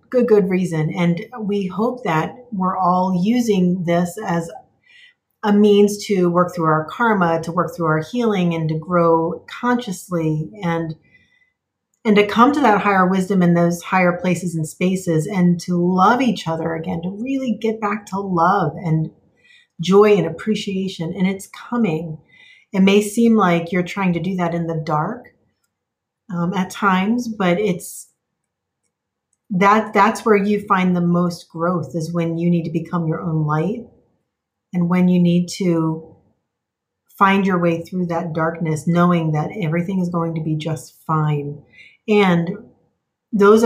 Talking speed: 160 wpm